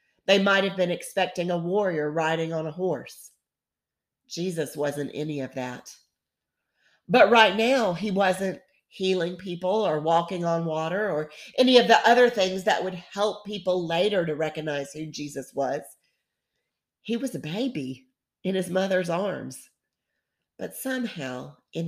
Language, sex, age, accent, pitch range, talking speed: English, female, 50-69, American, 145-185 Hz, 145 wpm